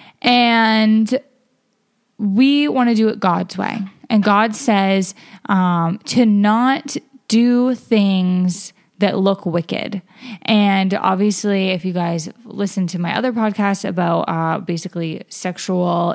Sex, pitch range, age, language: female, 185-220 Hz, 10-29, English